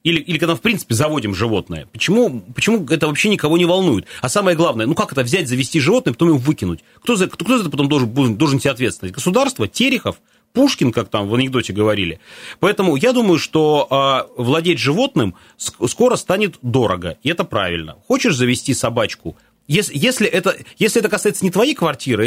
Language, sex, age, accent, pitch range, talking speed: Russian, male, 30-49, native, 120-175 Hz, 185 wpm